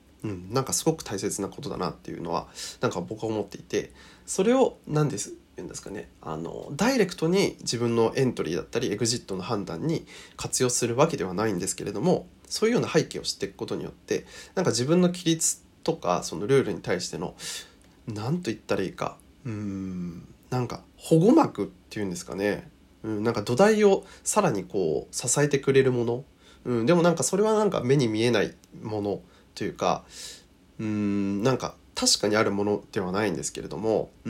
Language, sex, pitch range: Japanese, male, 110-170 Hz